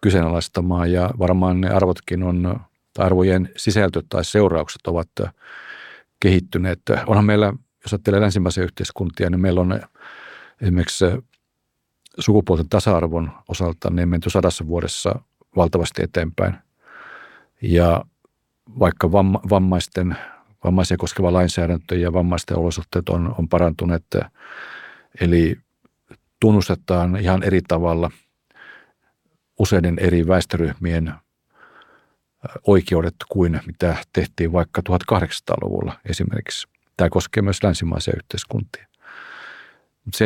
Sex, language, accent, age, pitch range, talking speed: male, Finnish, native, 50-69, 85-95 Hz, 95 wpm